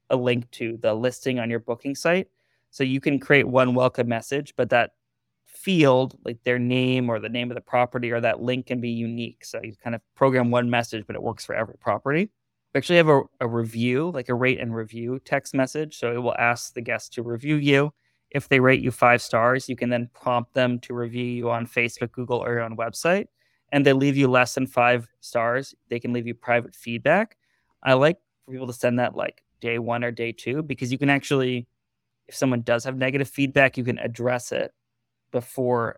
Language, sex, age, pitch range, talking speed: English, male, 20-39, 120-130 Hz, 220 wpm